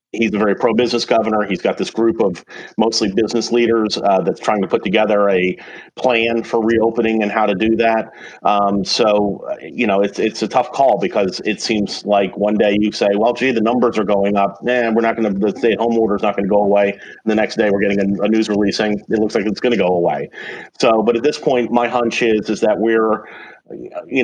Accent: American